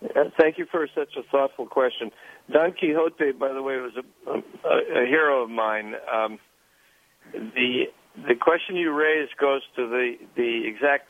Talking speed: 170 wpm